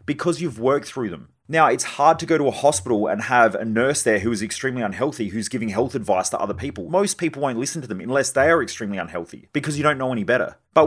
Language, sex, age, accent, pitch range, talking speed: English, male, 30-49, Australian, 110-145 Hz, 260 wpm